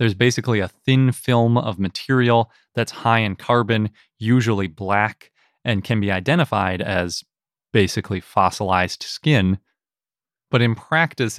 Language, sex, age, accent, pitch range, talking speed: English, male, 20-39, American, 100-120 Hz, 125 wpm